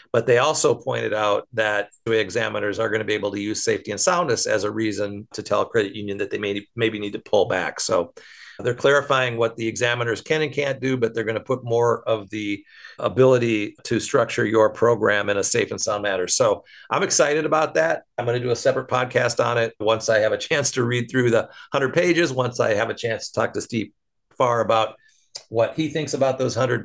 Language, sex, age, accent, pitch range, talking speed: English, male, 50-69, American, 105-130 Hz, 235 wpm